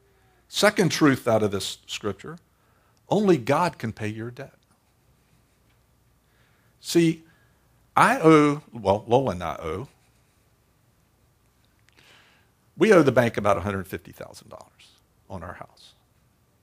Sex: male